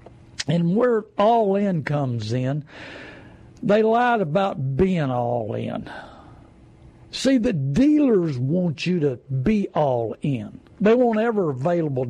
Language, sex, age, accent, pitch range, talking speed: English, male, 60-79, American, 135-195 Hz, 110 wpm